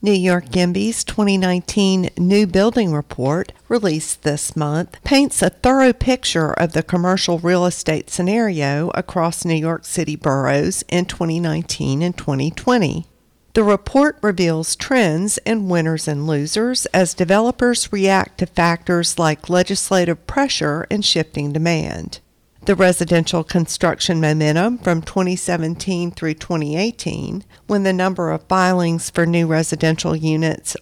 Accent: American